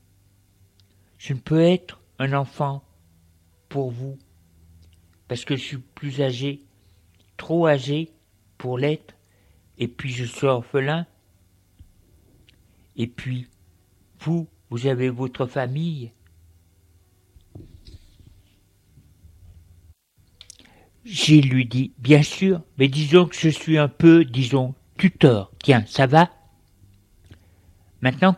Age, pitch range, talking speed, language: 60-79, 95-150 Hz, 100 wpm, French